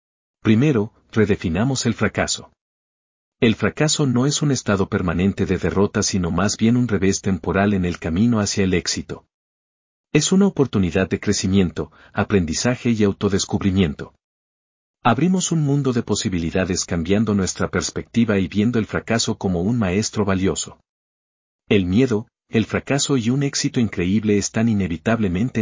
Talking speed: 140 wpm